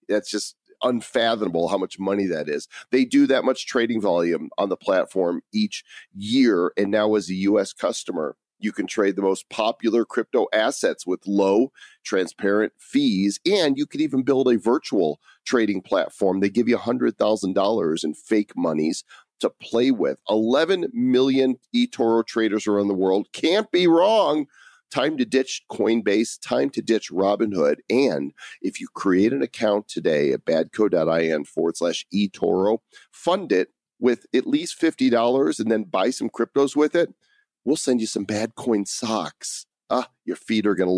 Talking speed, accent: 170 wpm, American